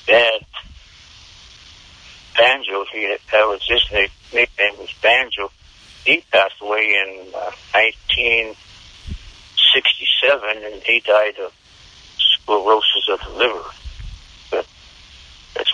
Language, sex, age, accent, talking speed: English, male, 60-79, American, 100 wpm